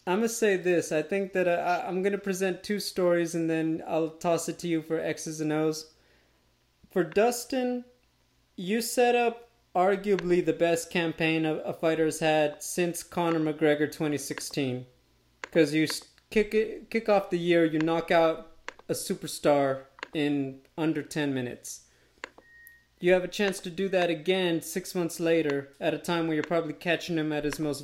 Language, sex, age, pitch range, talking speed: English, male, 30-49, 145-180 Hz, 180 wpm